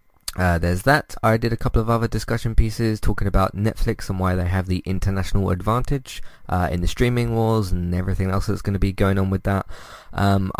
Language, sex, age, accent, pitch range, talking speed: English, male, 20-39, British, 90-110 Hz, 210 wpm